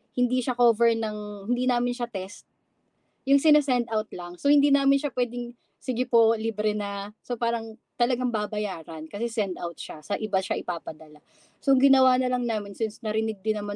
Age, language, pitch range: 20-39, Filipino, 190-245 Hz